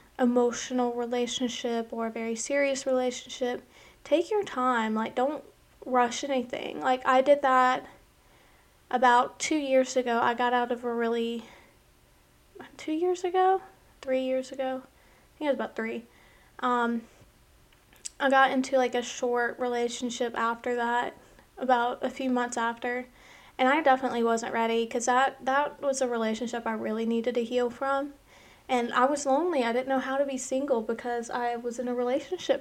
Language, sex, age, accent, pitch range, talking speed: English, female, 20-39, American, 235-265 Hz, 165 wpm